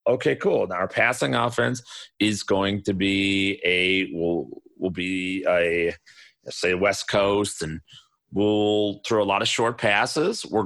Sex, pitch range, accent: male, 100-130 Hz, American